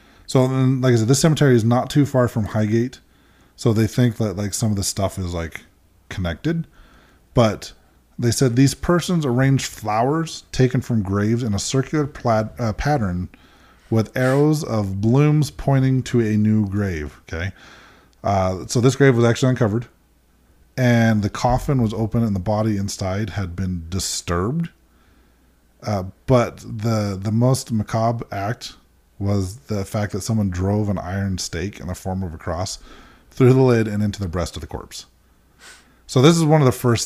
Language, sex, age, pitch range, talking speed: English, male, 20-39, 95-120 Hz, 175 wpm